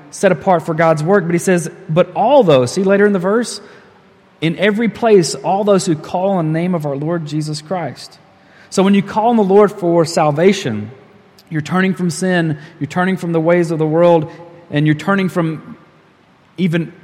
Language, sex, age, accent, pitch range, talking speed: English, male, 30-49, American, 140-175 Hz, 200 wpm